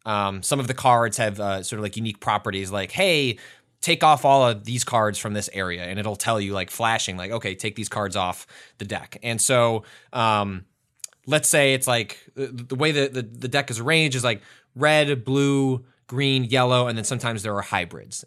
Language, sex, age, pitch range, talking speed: English, male, 20-39, 105-130 Hz, 205 wpm